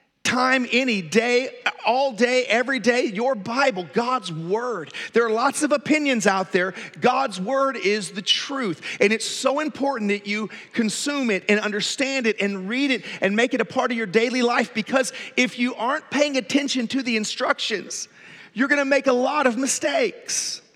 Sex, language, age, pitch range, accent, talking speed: male, English, 40-59, 215-275 Hz, American, 180 wpm